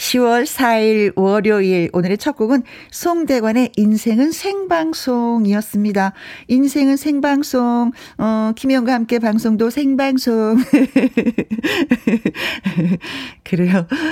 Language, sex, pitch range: Korean, female, 180-255 Hz